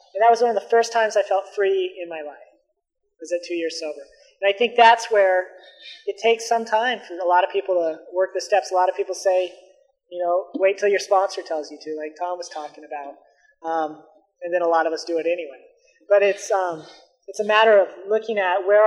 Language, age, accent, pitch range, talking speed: English, 20-39, American, 170-205 Hz, 240 wpm